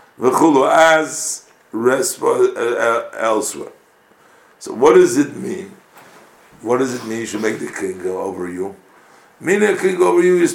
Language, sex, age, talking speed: English, male, 50-69, 160 wpm